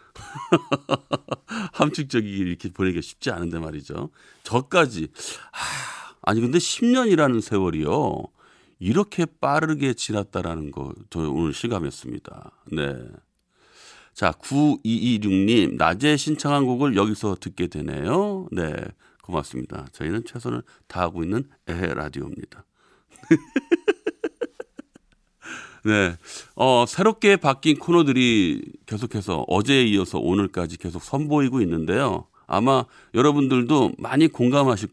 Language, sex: Korean, male